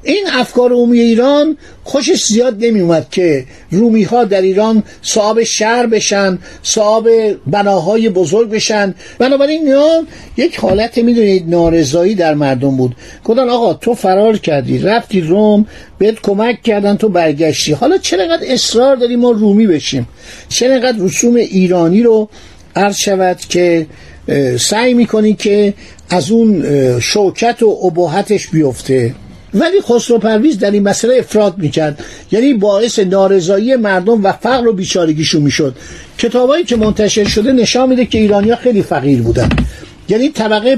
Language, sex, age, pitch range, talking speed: Persian, male, 60-79, 185-235 Hz, 135 wpm